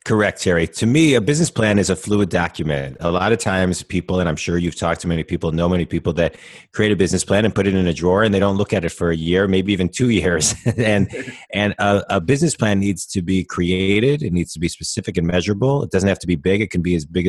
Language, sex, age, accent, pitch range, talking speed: English, male, 30-49, American, 85-100 Hz, 275 wpm